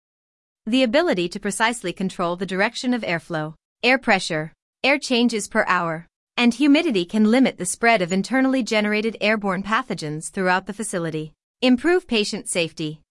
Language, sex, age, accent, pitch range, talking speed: English, female, 30-49, American, 180-245 Hz, 145 wpm